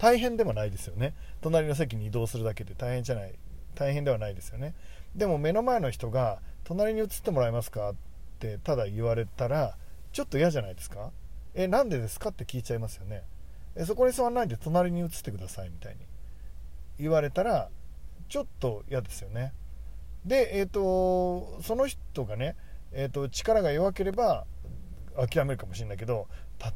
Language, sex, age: Japanese, male, 40-59